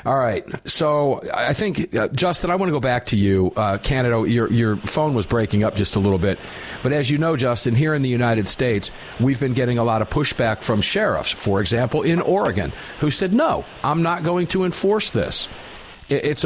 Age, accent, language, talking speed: 50-69, American, English, 215 wpm